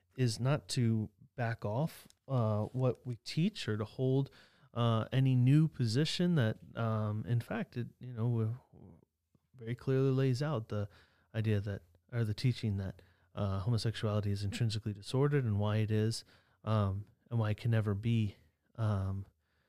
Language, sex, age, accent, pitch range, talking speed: English, male, 30-49, American, 105-130 Hz, 155 wpm